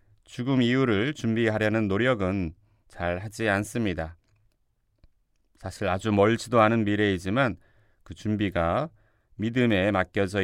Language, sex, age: Korean, male, 30-49